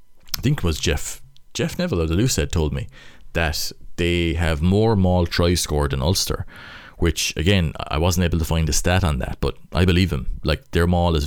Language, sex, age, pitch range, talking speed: English, male, 30-49, 75-90 Hz, 215 wpm